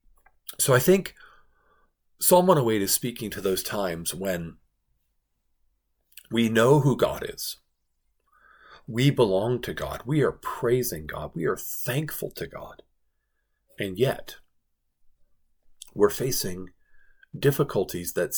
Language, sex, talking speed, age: English, male, 115 wpm, 40-59